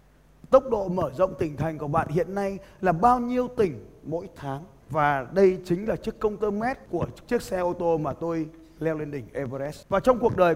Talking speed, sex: 220 wpm, male